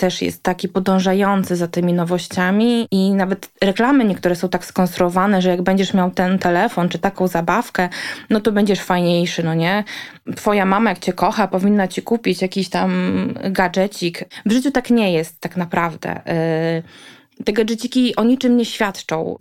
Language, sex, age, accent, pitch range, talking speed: Polish, female, 20-39, native, 190-235 Hz, 165 wpm